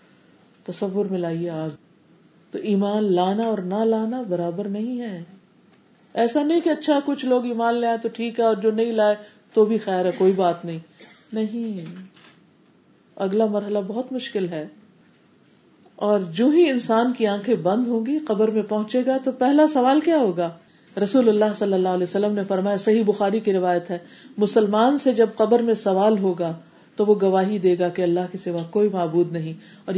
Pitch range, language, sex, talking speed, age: 185-230 Hz, Urdu, female, 180 wpm, 40-59